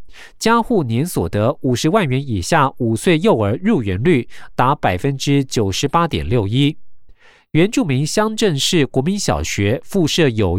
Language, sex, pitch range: Chinese, male, 120-175 Hz